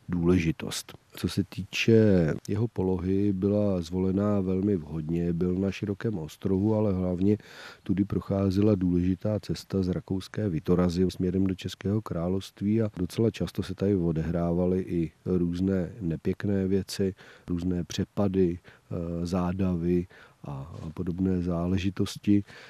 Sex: male